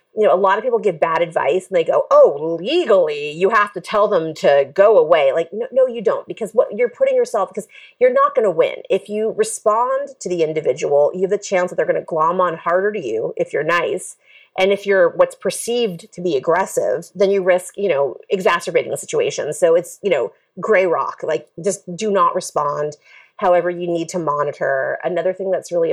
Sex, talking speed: female, 220 wpm